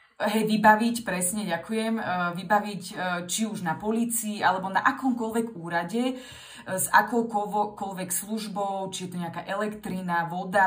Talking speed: 125 wpm